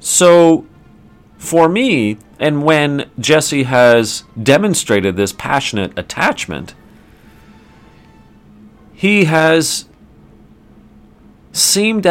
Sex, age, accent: male, 40-59, American